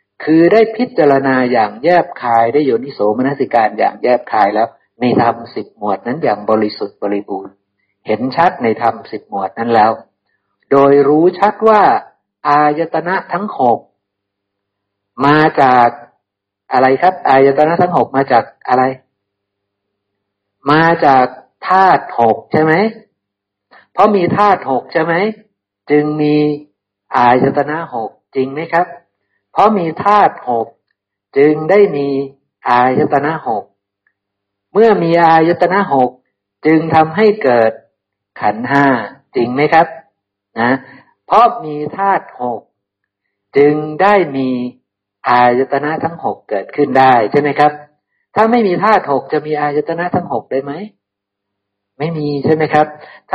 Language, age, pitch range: Thai, 60-79, 115-165 Hz